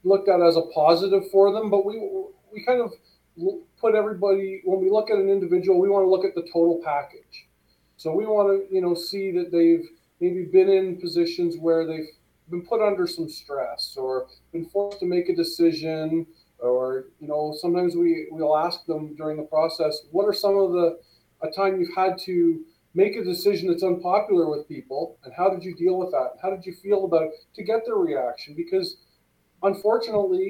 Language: English